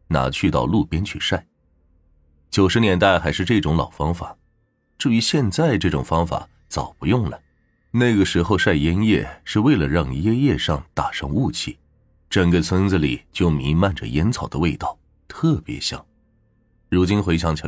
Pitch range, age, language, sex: 75-105 Hz, 30-49, Chinese, male